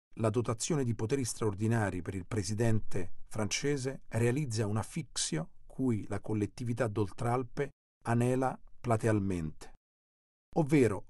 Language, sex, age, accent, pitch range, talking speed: Italian, male, 40-59, native, 105-130 Hz, 105 wpm